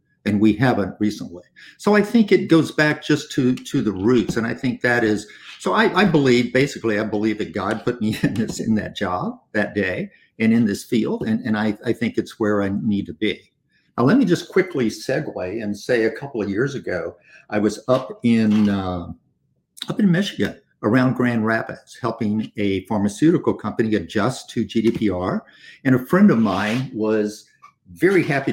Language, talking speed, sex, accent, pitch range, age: English, 195 wpm, male, American, 105-135 Hz, 50-69